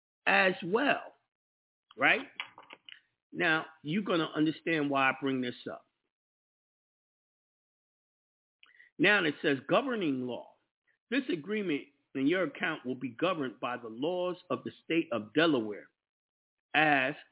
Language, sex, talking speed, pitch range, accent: English, male, 120 wpm, 125-165 Hz, American